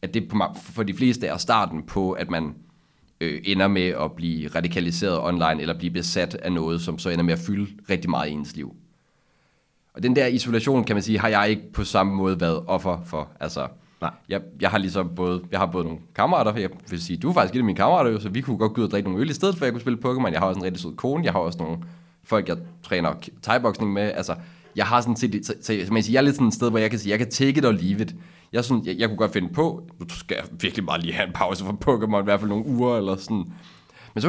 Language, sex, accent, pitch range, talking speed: Danish, male, native, 90-120 Hz, 275 wpm